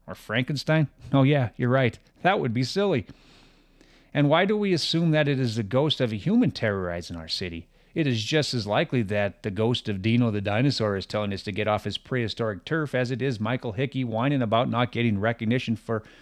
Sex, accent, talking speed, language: male, American, 215 wpm, English